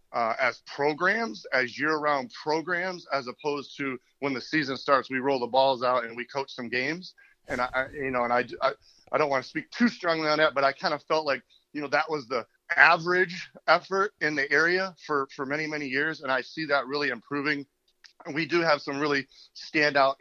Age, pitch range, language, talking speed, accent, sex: 40-59, 130-150 Hz, English, 215 wpm, American, male